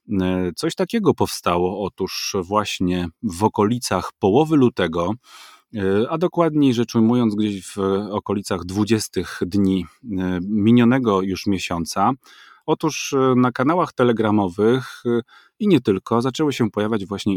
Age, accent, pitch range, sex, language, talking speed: 30-49, native, 95-120 Hz, male, Polish, 110 wpm